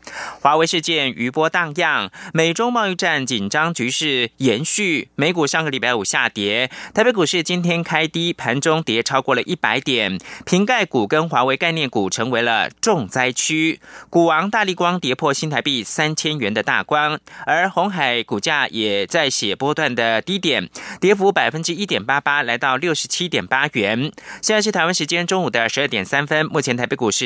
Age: 20-39